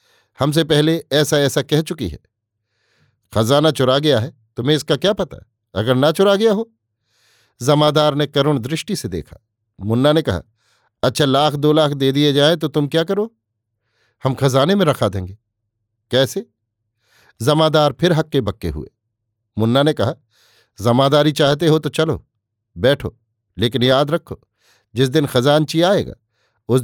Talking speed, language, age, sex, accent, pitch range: 150 wpm, Hindi, 50-69, male, native, 110-150 Hz